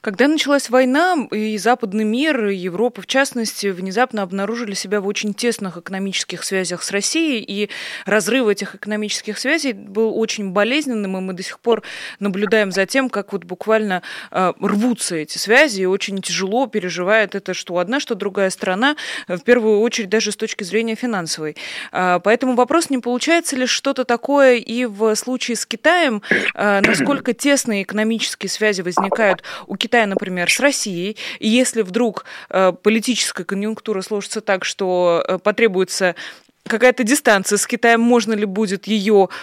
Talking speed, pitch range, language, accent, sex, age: 155 wpm, 190-235 Hz, Russian, native, female, 20-39